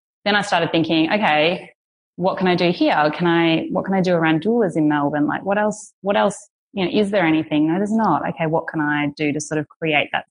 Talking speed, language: 250 wpm, English